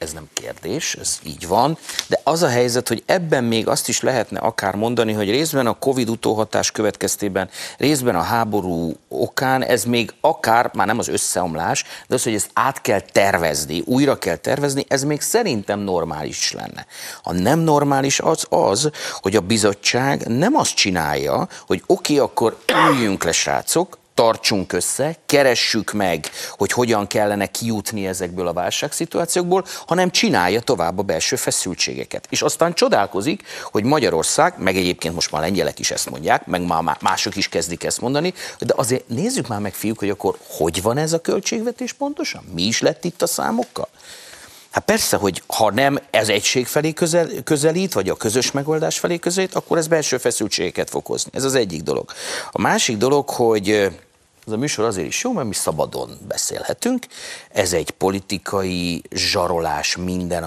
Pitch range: 100-150 Hz